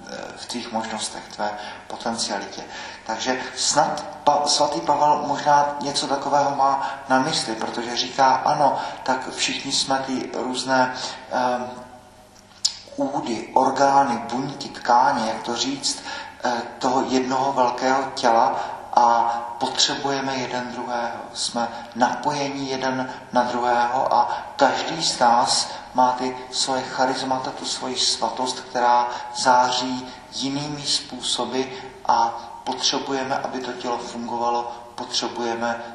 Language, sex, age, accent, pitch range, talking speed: Czech, male, 40-59, native, 120-130 Hz, 115 wpm